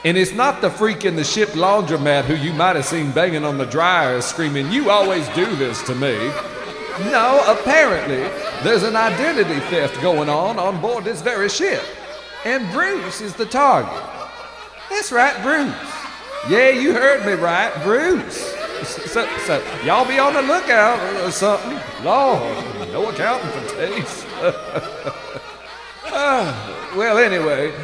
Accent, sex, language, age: American, male, English, 40-59